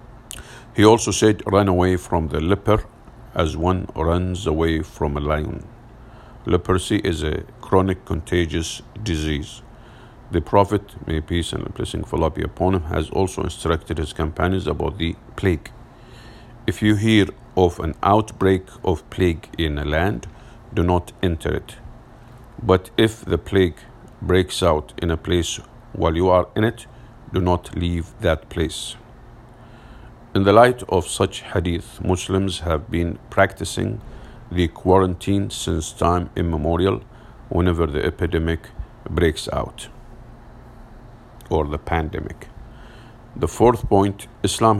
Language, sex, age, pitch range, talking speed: English, male, 50-69, 85-115 Hz, 135 wpm